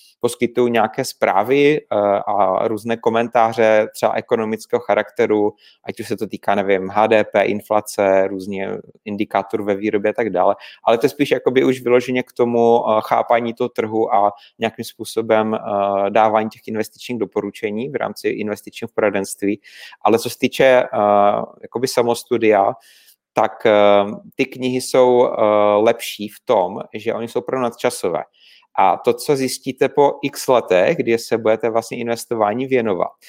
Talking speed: 140 wpm